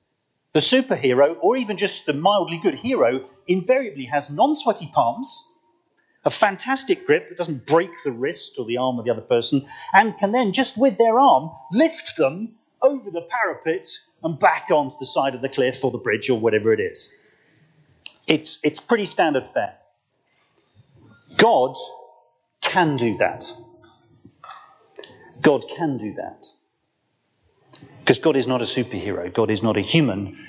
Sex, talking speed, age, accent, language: male, 155 wpm, 30-49, British, English